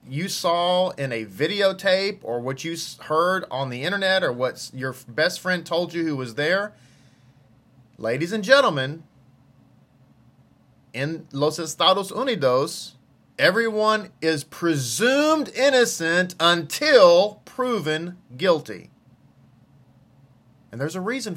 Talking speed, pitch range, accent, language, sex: 110 wpm, 130-185 Hz, American, English, male